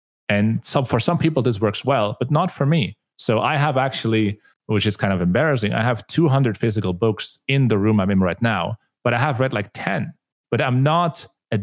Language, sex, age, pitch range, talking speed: English, male, 30-49, 105-135 Hz, 220 wpm